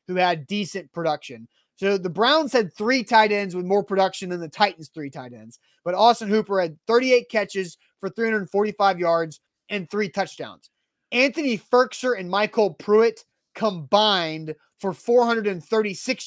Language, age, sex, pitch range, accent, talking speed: English, 30-49, male, 190-230 Hz, American, 150 wpm